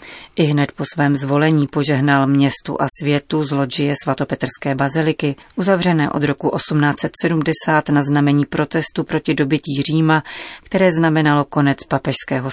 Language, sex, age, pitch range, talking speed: Czech, female, 30-49, 140-165 Hz, 130 wpm